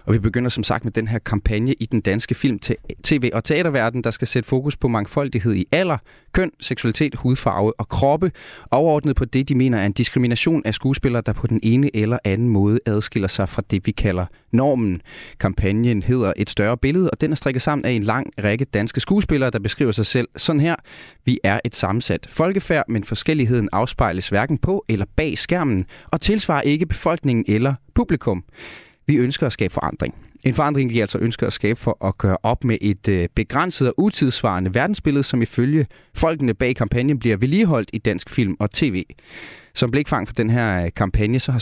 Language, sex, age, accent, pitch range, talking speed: Danish, male, 30-49, native, 105-140 Hz, 195 wpm